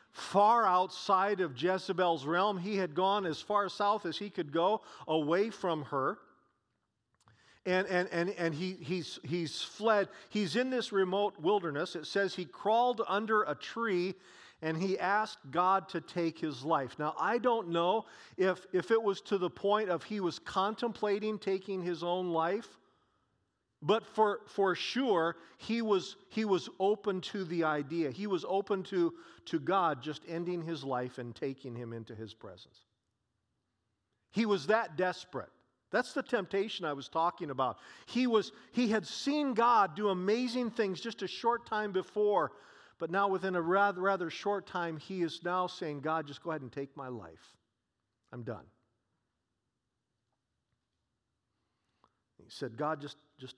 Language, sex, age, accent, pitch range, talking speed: English, male, 40-59, American, 150-205 Hz, 160 wpm